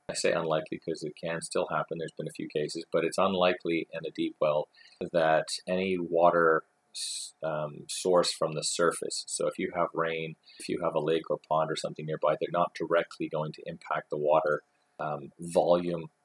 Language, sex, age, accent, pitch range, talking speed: English, male, 30-49, American, 80-90 Hz, 190 wpm